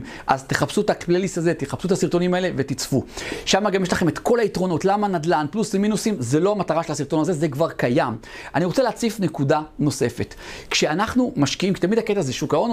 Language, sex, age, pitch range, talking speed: Hebrew, male, 40-59, 150-210 Hz, 200 wpm